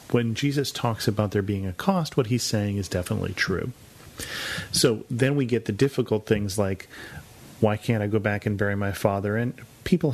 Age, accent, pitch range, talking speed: 40-59, American, 105-125 Hz, 195 wpm